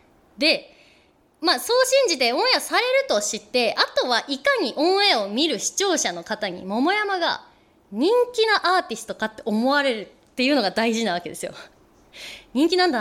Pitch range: 195-315 Hz